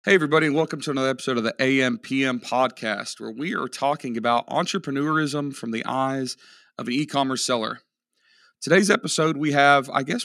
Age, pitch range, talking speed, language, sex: 40-59, 115-145 Hz, 175 wpm, English, male